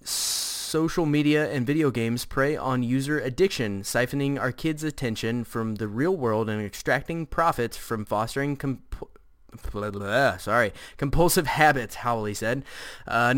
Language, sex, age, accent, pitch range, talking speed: English, male, 20-39, American, 115-150 Hz, 120 wpm